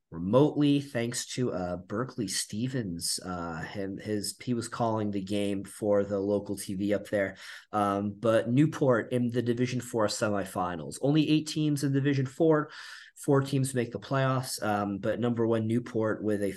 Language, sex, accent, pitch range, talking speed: English, male, American, 105-130 Hz, 165 wpm